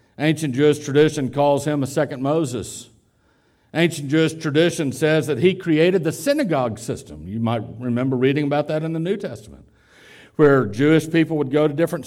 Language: English